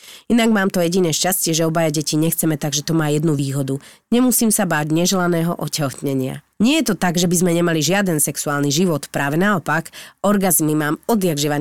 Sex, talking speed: female, 180 wpm